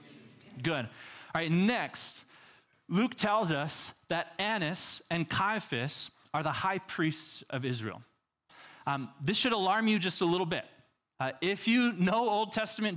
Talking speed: 150 wpm